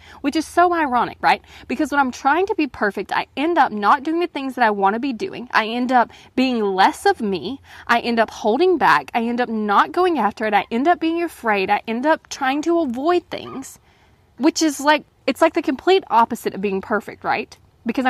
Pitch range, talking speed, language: 215-300 Hz, 230 wpm, English